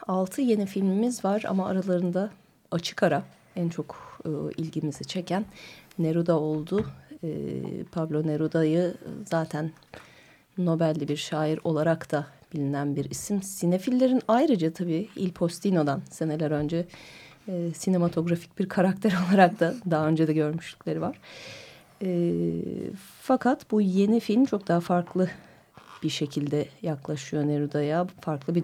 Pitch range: 150-190 Hz